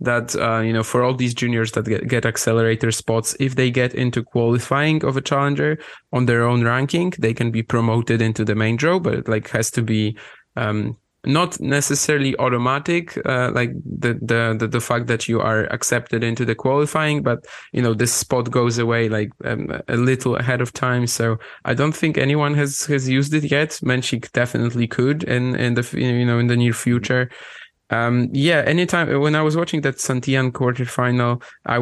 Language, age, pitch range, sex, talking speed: English, 20-39, 115-135 Hz, male, 195 wpm